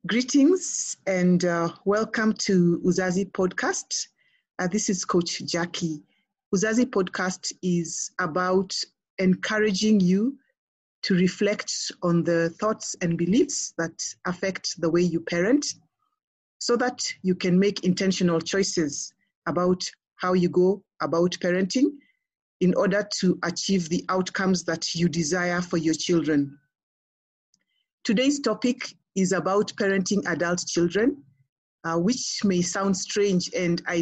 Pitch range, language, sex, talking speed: 175-215 Hz, English, female, 125 wpm